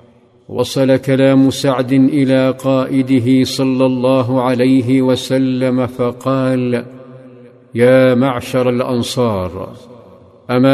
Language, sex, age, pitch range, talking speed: Arabic, male, 50-69, 125-130 Hz, 80 wpm